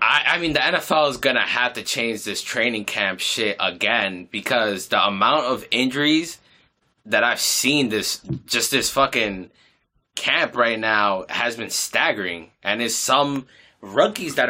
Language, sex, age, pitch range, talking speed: English, male, 20-39, 110-150 Hz, 155 wpm